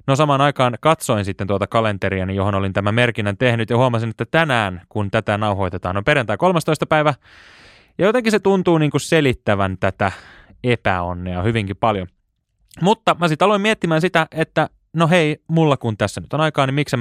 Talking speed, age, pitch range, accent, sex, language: 185 wpm, 20-39, 100-140 Hz, native, male, Finnish